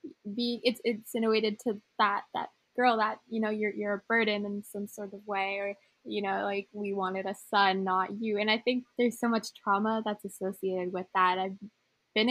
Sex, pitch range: female, 200-235 Hz